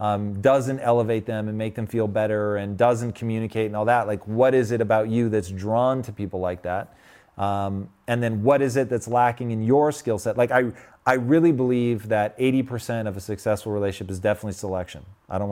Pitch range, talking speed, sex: 110-135 Hz, 215 wpm, male